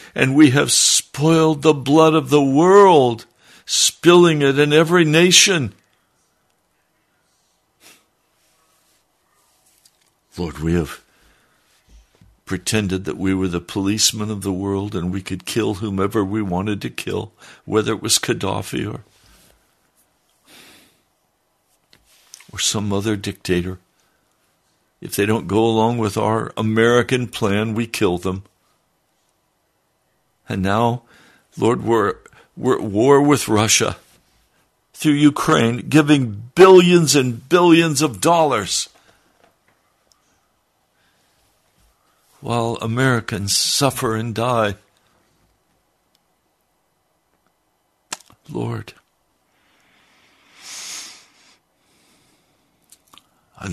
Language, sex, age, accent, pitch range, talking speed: English, male, 60-79, American, 100-140 Hz, 90 wpm